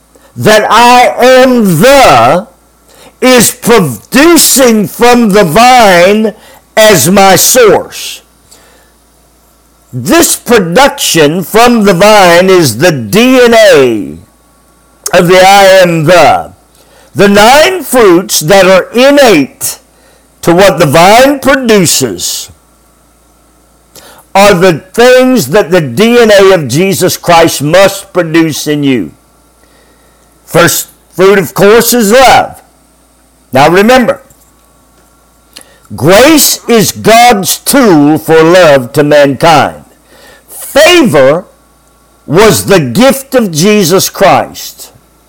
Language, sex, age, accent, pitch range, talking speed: English, male, 50-69, American, 180-245 Hz, 95 wpm